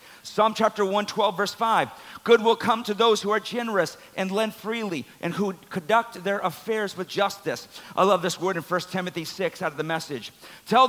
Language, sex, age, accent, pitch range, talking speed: English, male, 50-69, American, 190-245 Hz, 205 wpm